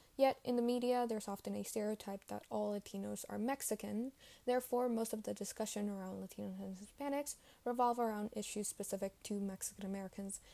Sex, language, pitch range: female, English, 200-240 Hz